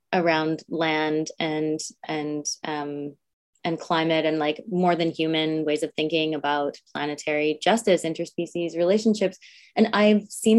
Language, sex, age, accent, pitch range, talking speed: English, female, 20-39, American, 155-190 Hz, 130 wpm